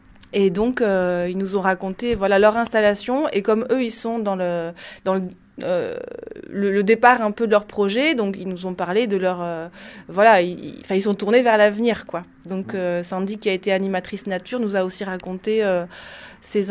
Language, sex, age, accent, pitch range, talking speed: French, female, 30-49, French, 185-230 Hz, 195 wpm